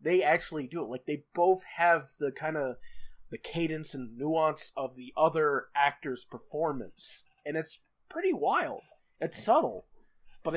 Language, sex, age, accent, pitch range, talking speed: English, male, 30-49, American, 140-205 Hz, 155 wpm